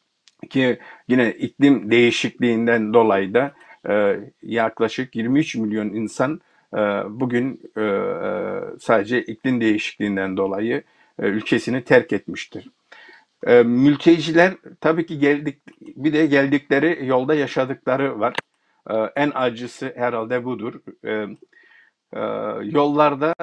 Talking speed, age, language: 105 wpm, 50-69, Turkish